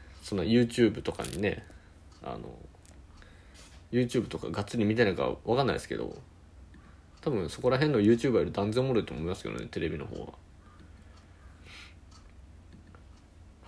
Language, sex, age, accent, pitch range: Japanese, male, 20-39, native, 80-110 Hz